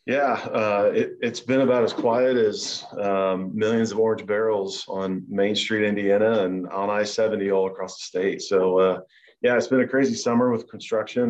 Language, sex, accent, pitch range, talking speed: English, male, American, 90-105 Hz, 185 wpm